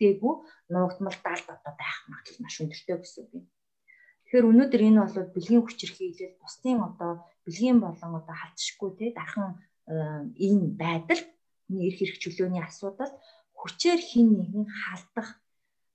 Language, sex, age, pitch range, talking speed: English, female, 20-39, 170-230 Hz, 130 wpm